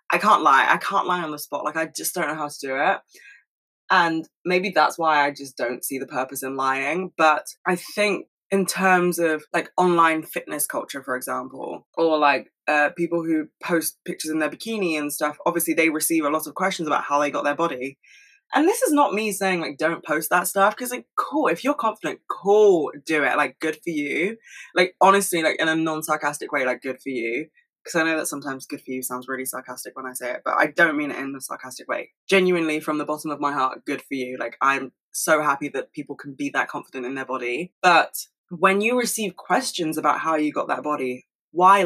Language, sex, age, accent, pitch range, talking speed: English, female, 20-39, British, 145-185 Hz, 230 wpm